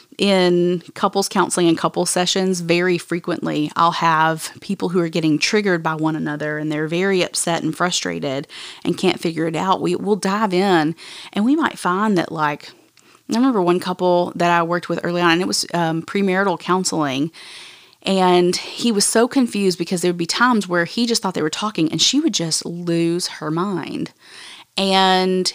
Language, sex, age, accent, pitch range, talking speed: English, female, 30-49, American, 165-195 Hz, 185 wpm